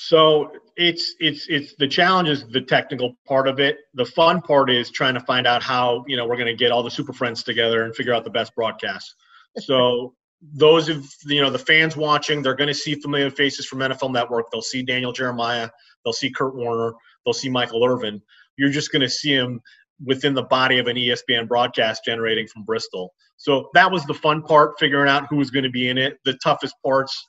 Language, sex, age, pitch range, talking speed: English, male, 30-49, 120-145 Hz, 220 wpm